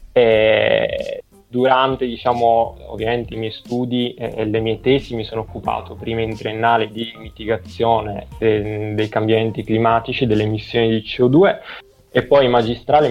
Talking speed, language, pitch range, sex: 135 wpm, Italian, 110-120 Hz, male